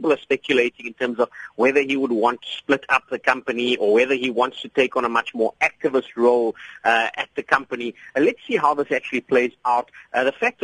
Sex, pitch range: male, 120-150 Hz